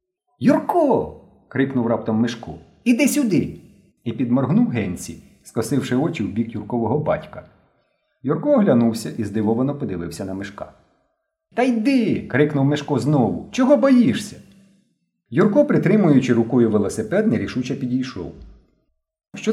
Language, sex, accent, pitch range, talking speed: Ukrainian, male, native, 105-180 Hz, 125 wpm